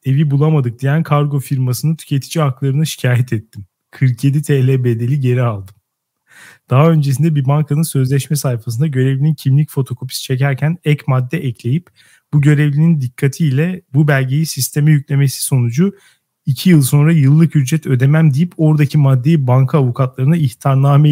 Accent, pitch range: native, 130-155 Hz